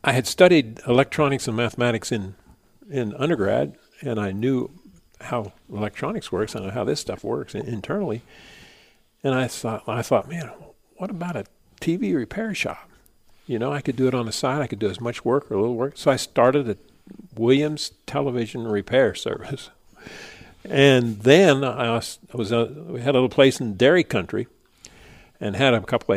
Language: English